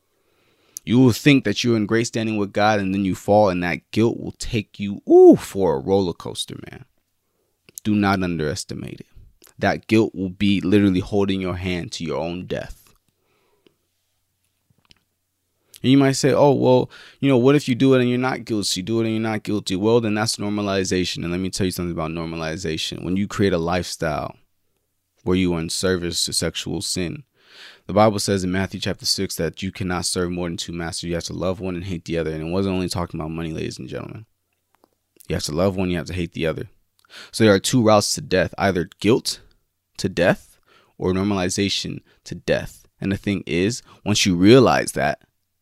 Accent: American